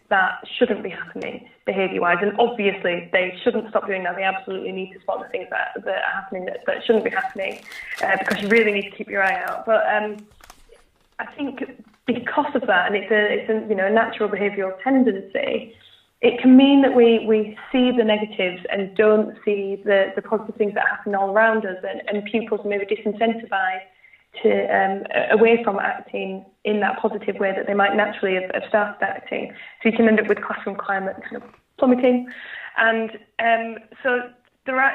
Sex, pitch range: female, 200-230 Hz